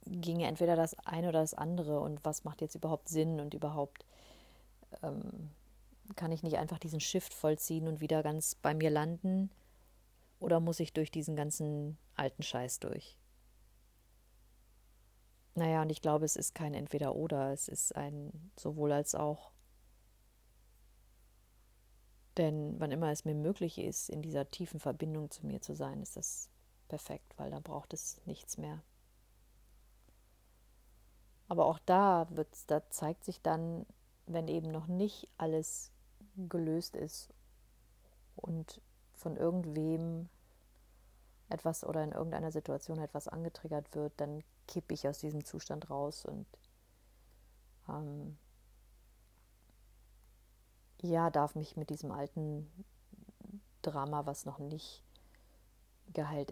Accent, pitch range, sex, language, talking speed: German, 110-160 Hz, female, German, 130 wpm